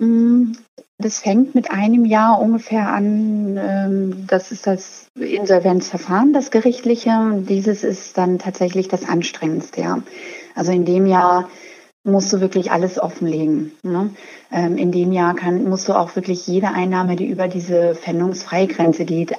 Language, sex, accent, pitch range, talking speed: German, female, German, 165-195 Hz, 130 wpm